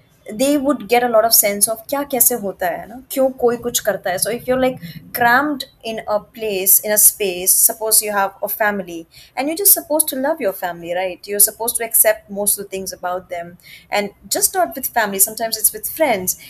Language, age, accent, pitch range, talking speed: English, 20-39, Indian, 205-275 Hz, 225 wpm